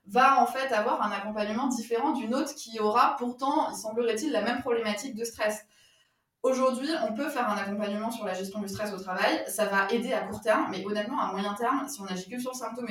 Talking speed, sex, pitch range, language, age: 235 wpm, female, 205-250 Hz, French, 20-39